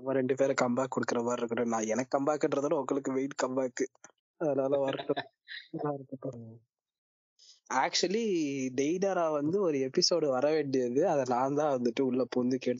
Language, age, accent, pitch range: Tamil, 20-39, native, 125-145 Hz